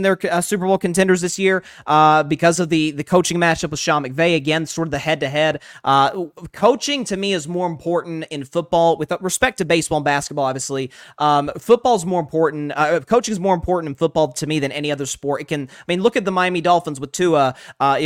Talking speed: 235 wpm